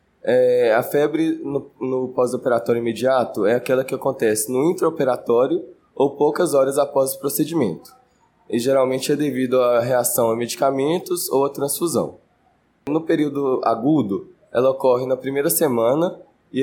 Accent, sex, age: Brazilian, male, 20-39